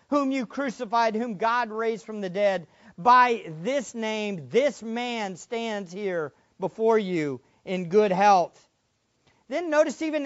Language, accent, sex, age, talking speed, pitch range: English, American, male, 50-69, 140 wpm, 215-275 Hz